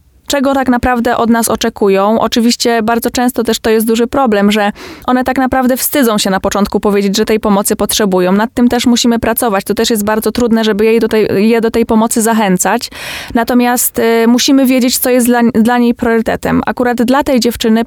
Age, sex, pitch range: 20-39, female, 210-240 Hz